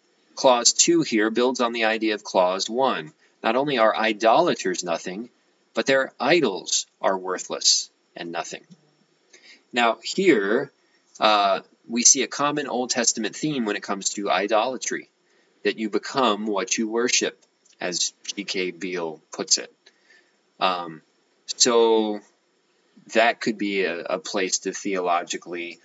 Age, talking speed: 20-39, 135 wpm